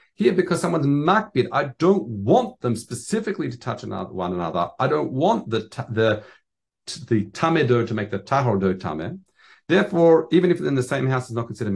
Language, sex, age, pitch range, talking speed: English, male, 50-69, 115-160 Hz, 190 wpm